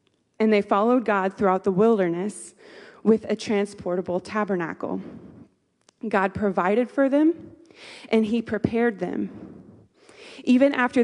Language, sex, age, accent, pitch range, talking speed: English, female, 20-39, American, 195-245 Hz, 115 wpm